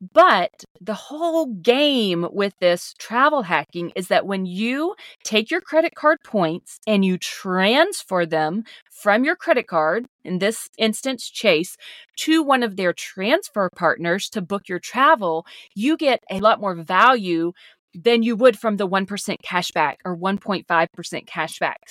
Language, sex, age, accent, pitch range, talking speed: English, female, 40-59, American, 180-250 Hz, 150 wpm